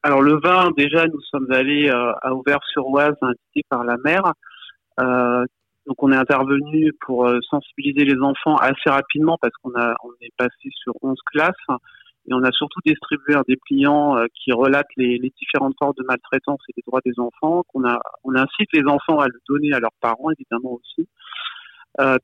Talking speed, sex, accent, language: 190 wpm, male, French, French